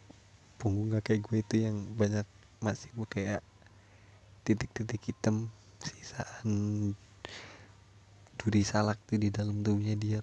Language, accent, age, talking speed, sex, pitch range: Indonesian, native, 20-39, 110 wpm, male, 105-115 Hz